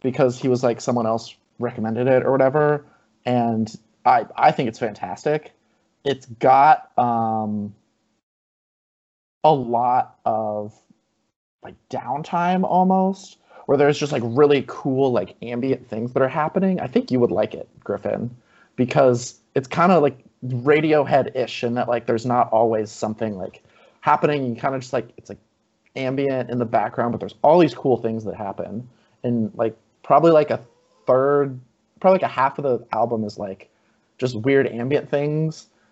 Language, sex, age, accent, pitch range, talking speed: English, male, 30-49, American, 110-135 Hz, 160 wpm